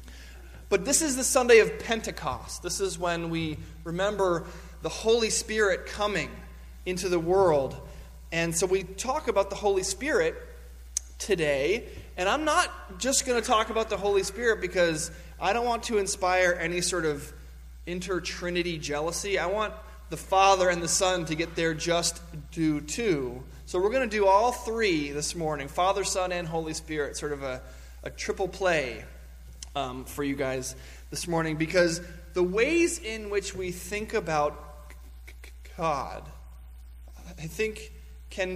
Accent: American